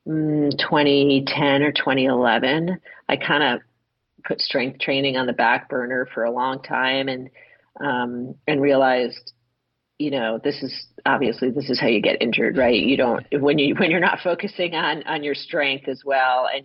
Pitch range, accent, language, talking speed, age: 135-170 Hz, American, English, 175 wpm, 40-59